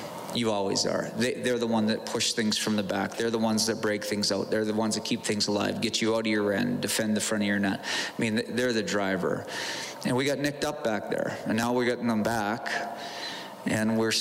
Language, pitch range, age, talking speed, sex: English, 105-115 Hz, 30-49, 245 wpm, male